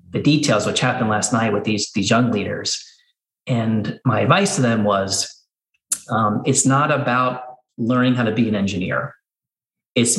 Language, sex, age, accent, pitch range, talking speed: English, male, 30-49, American, 110-130 Hz, 165 wpm